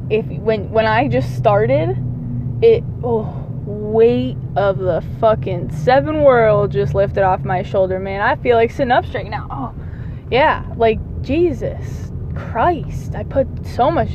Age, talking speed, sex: 10-29, 155 wpm, female